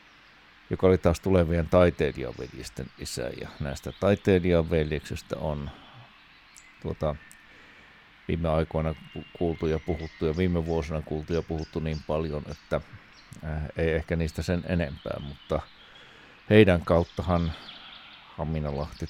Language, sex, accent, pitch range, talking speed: Finnish, male, native, 75-90 Hz, 105 wpm